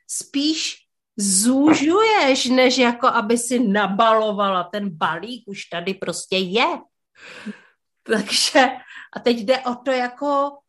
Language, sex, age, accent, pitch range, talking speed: Czech, female, 30-49, native, 195-270 Hz, 110 wpm